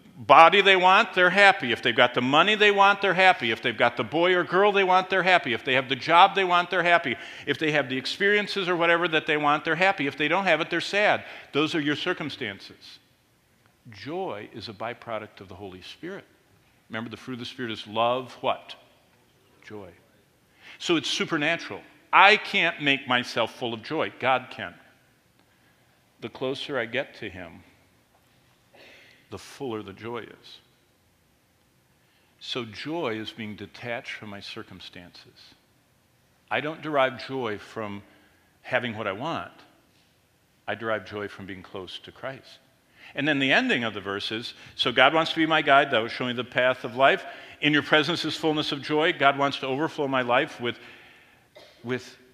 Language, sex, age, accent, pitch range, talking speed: English, male, 50-69, American, 115-160 Hz, 185 wpm